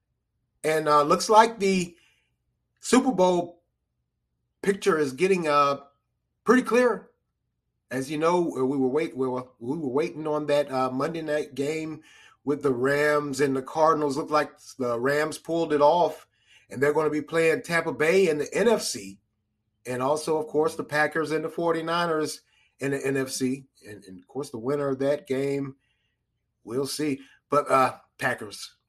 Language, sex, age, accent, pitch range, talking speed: English, male, 30-49, American, 135-175 Hz, 170 wpm